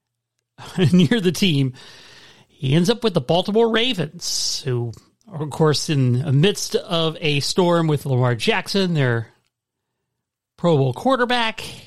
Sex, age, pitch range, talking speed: male, 40-59, 135-190 Hz, 135 wpm